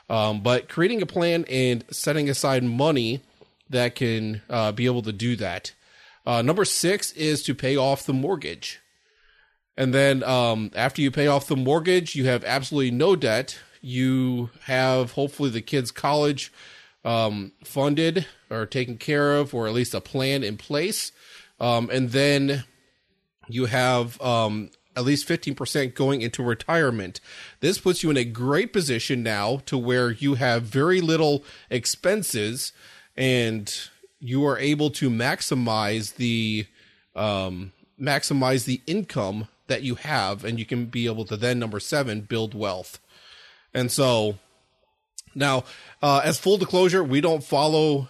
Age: 30-49